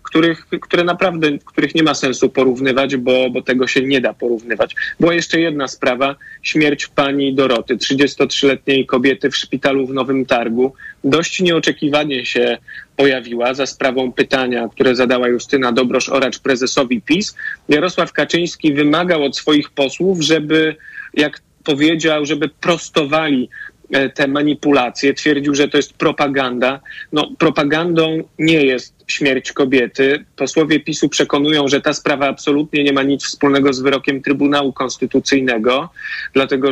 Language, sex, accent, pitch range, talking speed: Polish, male, native, 135-150 Hz, 135 wpm